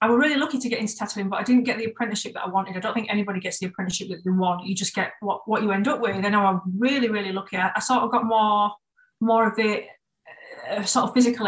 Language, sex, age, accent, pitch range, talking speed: English, female, 30-49, British, 195-245 Hz, 280 wpm